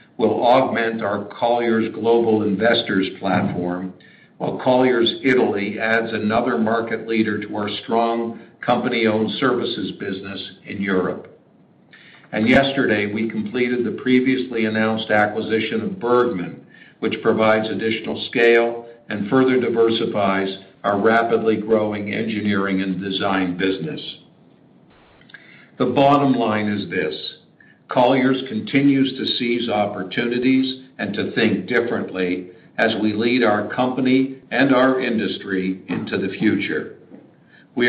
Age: 60-79